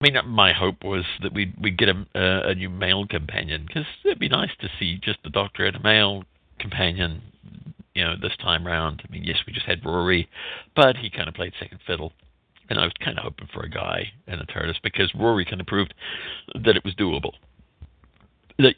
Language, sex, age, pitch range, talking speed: English, male, 50-69, 85-105 Hz, 215 wpm